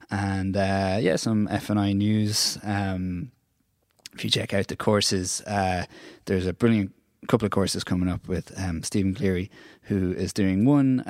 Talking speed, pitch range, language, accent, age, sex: 175 wpm, 95-110 Hz, English, Irish, 20-39, male